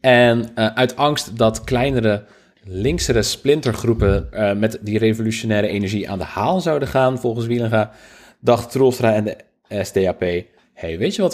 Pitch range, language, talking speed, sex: 105-130 Hz, Dutch, 155 wpm, male